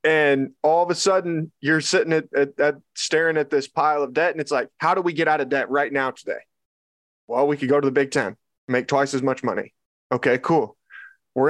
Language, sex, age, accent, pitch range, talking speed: English, male, 20-39, American, 130-155 Hz, 230 wpm